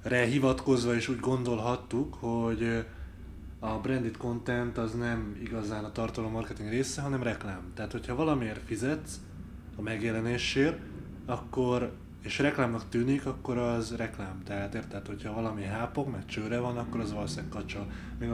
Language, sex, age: Hungarian, male, 20-39